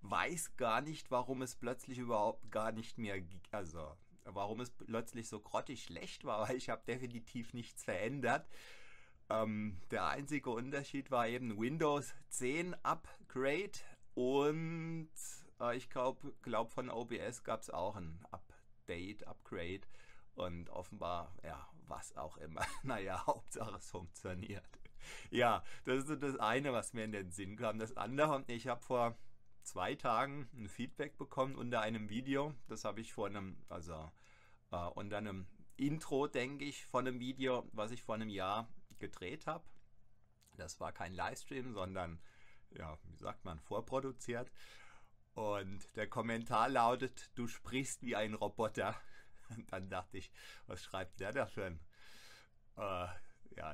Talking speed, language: 150 wpm, German